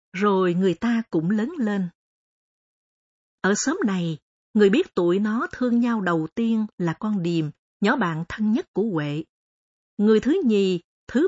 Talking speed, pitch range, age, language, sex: 160 wpm, 185-240 Hz, 50-69, Vietnamese, female